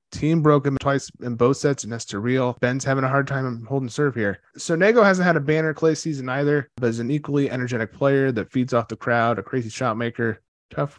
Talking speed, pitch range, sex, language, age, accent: 230 wpm, 120-155 Hz, male, English, 20-39, American